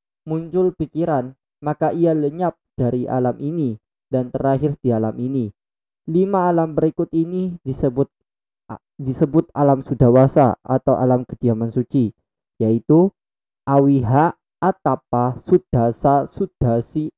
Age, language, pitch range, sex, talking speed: 20-39, Indonesian, 125-150 Hz, male, 105 wpm